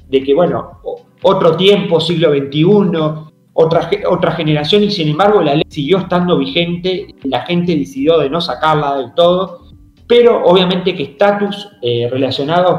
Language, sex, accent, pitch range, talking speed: Spanish, male, Argentinian, 140-200 Hz, 150 wpm